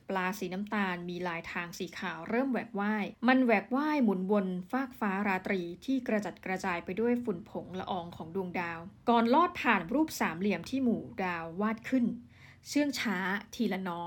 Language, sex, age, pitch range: Thai, female, 20-39, 190-230 Hz